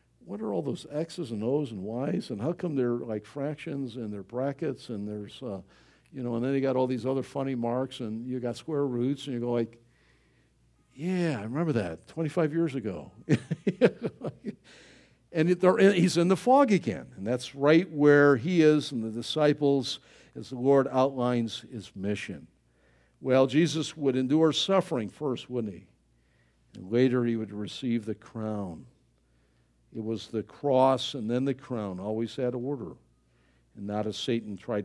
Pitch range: 110-160 Hz